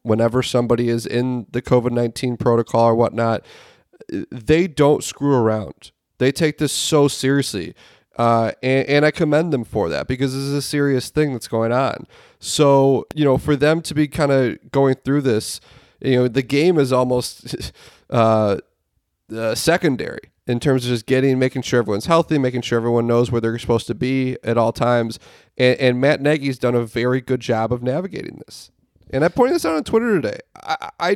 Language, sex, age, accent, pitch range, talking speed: English, male, 30-49, American, 120-145 Hz, 190 wpm